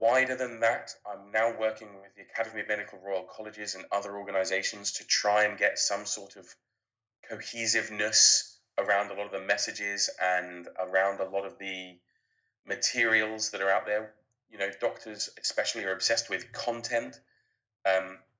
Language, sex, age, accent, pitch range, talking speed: English, male, 20-39, British, 95-110 Hz, 165 wpm